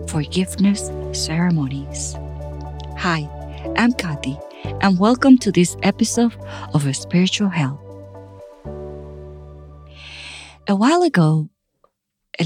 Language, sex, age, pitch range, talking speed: English, female, 40-59, 140-215 Hz, 80 wpm